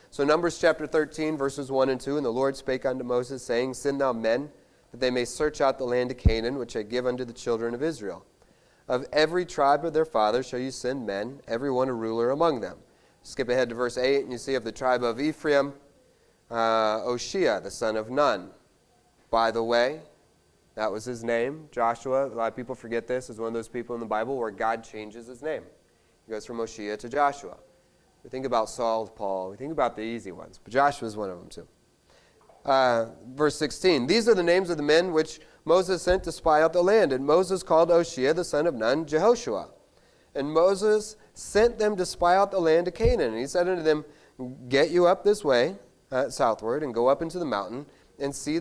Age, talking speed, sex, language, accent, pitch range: 30-49, 220 wpm, male, English, American, 120-155 Hz